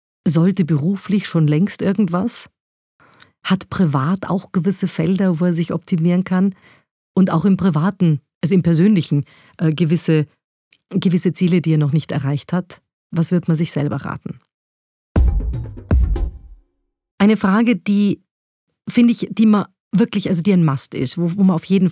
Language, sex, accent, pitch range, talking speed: German, female, German, 165-195 Hz, 155 wpm